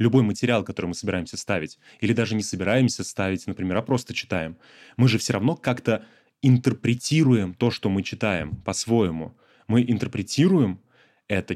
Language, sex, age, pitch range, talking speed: Russian, male, 20-39, 95-120 Hz, 150 wpm